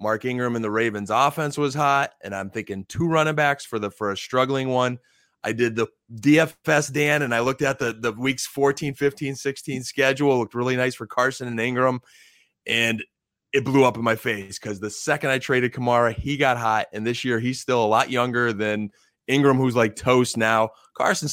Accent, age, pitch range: American, 20-39, 110-135 Hz